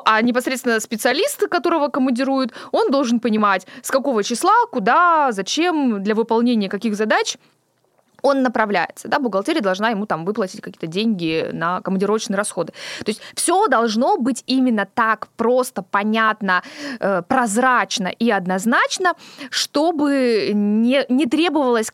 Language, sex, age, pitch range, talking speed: Russian, female, 20-39, 205-270 Hz, 125 wpm